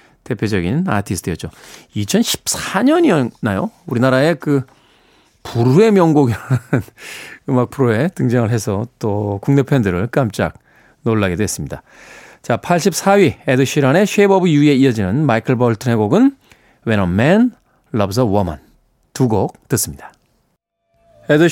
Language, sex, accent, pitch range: Korean, male, native, 120-180 Hz